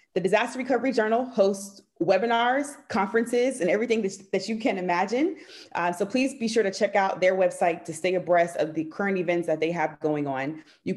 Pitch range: 165-225 Hz